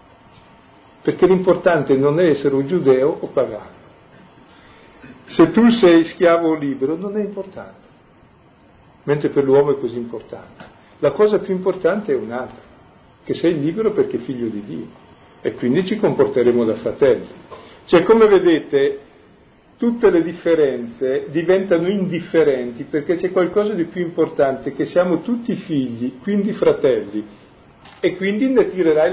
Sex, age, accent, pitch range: male, 50-69, native, 140-210 Hz